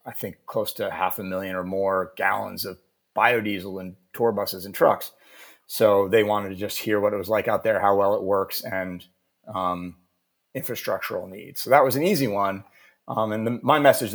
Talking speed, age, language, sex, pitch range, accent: 205 wpm, 30-49, English, male, 95-130 Hz, American